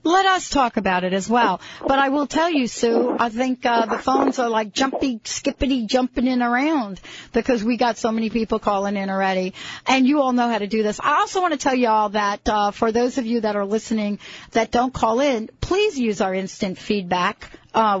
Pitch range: 190-245 Hz